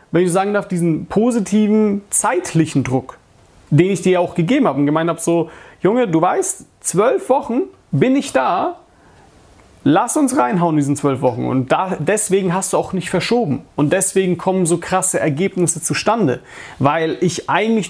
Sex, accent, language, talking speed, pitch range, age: male, German, German, 170 wpm, 165-215 Hz, 40-59